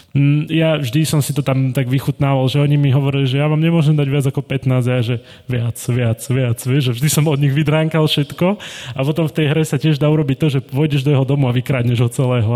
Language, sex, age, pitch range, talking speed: Slovak, male, 20-39, 125-155 Hz, 255 wpm